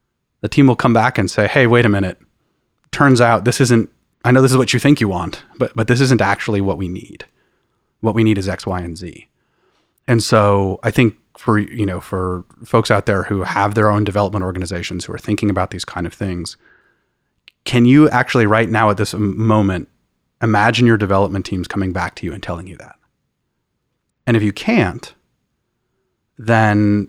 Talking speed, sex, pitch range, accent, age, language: 200 wpm, male, 95-120 Hz, American, 30-49, English